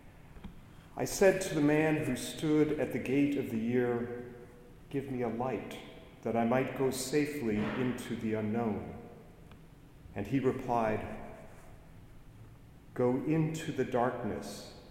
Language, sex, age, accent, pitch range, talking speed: English, male, 40-59, American, 115-145 Hz, 130 wpm